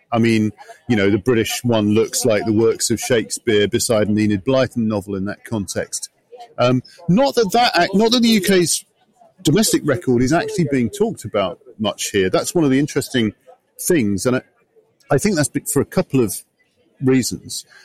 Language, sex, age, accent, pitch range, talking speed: English, male, 40-59, British, 110-165 Hz, 185 wpm